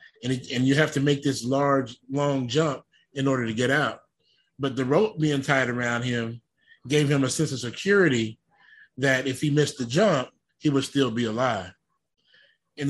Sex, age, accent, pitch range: male, 20-39, American, 120-150 Hz